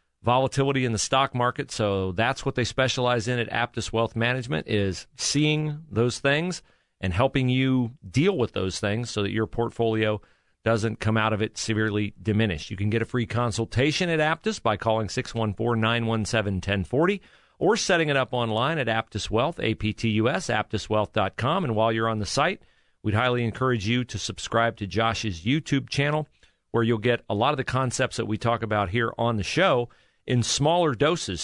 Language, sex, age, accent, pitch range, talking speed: English, male, 40-59, American, 105-125 Hz, 180 wpm